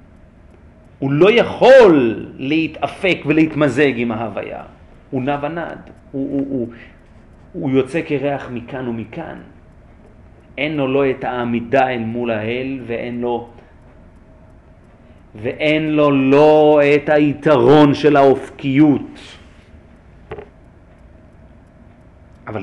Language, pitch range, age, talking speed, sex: Hebrew, 85-145 Hz, 40-59, 95 wpm, male